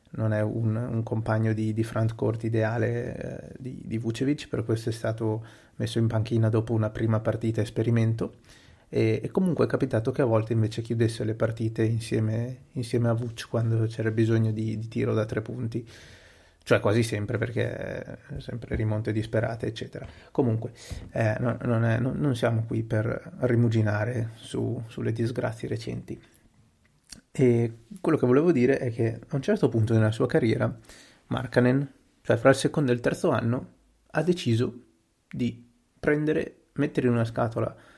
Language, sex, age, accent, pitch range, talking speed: Italian, male, 30-49, native, 110-125 Hz, 165 wpm